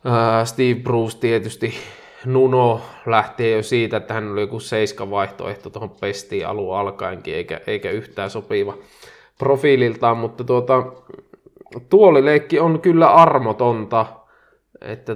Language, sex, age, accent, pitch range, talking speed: Finnish, male, 20-39, native, 110-140 Hz, 115 wpm